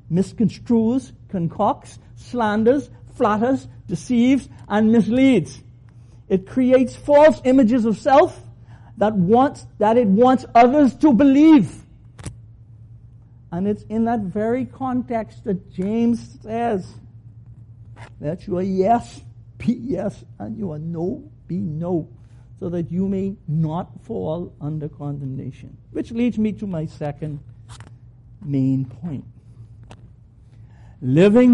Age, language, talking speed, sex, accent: 60-79, English, 110 wpm, male, American